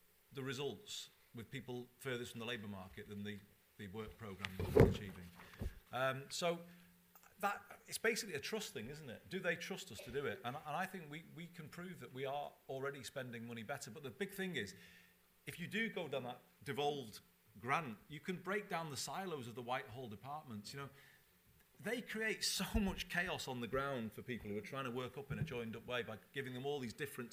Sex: male